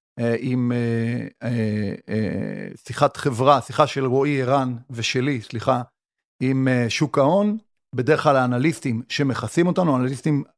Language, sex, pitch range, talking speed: Hebrew, male, 120-150 Hz, 100 wpm